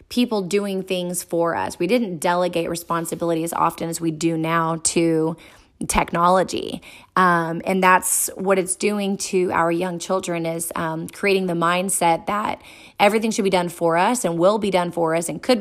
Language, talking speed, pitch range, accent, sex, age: English, 180 wpm, 165-185 Hz, American, female, 20-39